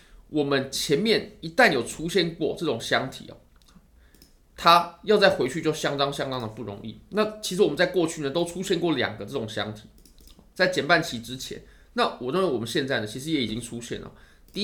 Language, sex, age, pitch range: Chinese, male, 20-39, 115-170 Hz